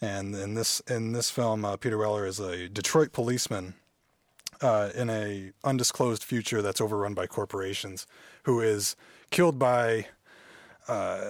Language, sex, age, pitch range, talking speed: English, male, 30-49, 100-125 Hz, 145 wpm